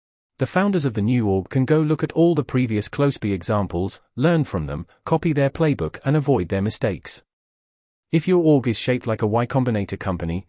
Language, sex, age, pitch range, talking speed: English, male, 40-59, 105-145 Hz, 200 wpm